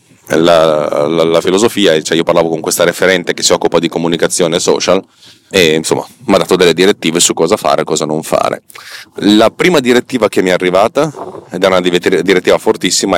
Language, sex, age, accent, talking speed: Italian, male, 30-49, native, 190 wpm